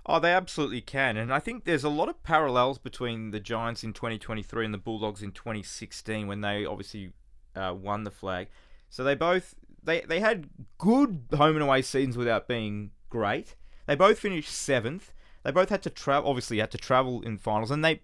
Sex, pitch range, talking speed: male, 110-150 Hz, 200 wpm